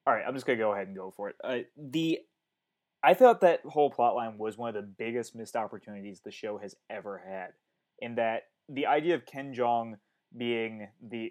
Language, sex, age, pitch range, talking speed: English, male, 20-39, 110-130 Hz, 205 wpm